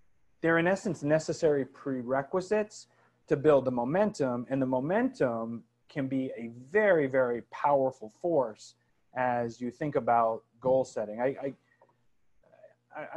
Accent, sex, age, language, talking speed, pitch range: American, male, 30-49, English, 125 wpm, 130-190 Hz